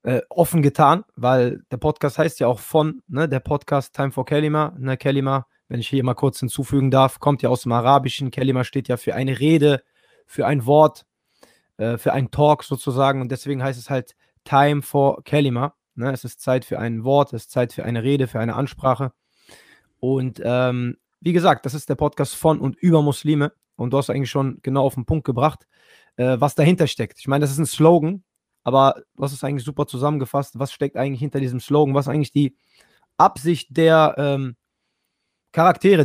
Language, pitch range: German, 135-155 Hz